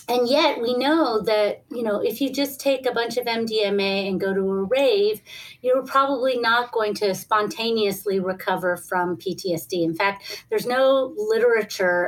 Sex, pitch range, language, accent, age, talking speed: female, 185-230 Hz, English, American, 30-49, 170 wpm